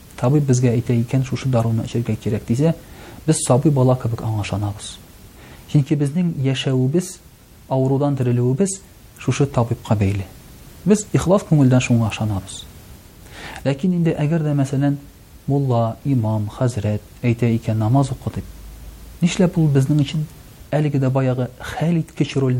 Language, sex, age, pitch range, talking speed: Russian, male, 40-59, 110-155 Hz, 115 wpm